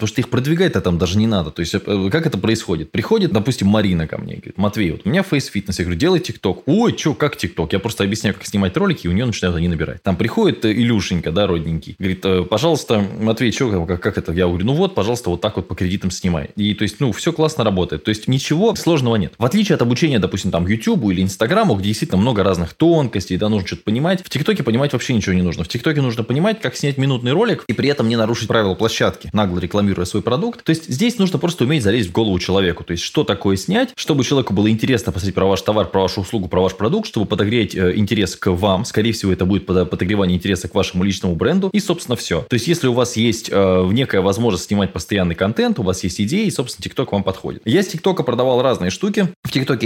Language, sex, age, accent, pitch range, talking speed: Russian, male, 20-39, native, 95-130 Hz, 240 wpm